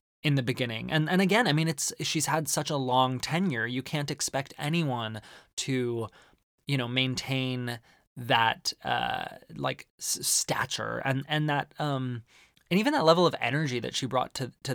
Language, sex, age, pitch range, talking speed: English, male, 20-39, 120-150 Hz, 170 wpm